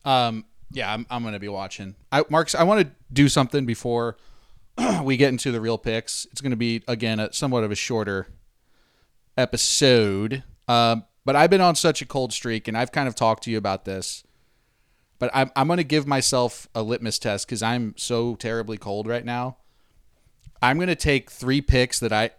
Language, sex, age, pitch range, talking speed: English, male, 30-49, 110-135 Hz, 195 wpm